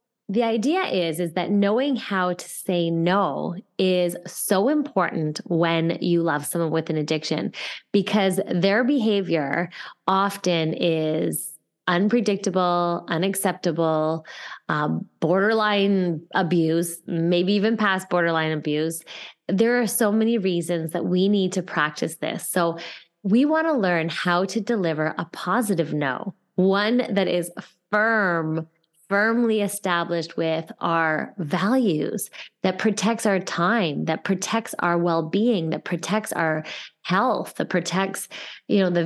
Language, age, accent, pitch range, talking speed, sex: English, 20-39, American, 170-210 Hz, 130 wpm, female